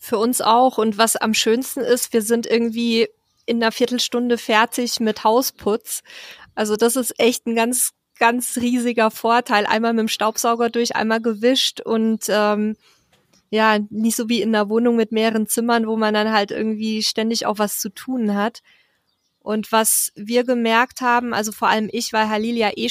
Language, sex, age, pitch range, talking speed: German, female, 20-39, 215-240 Hz, 180 wpm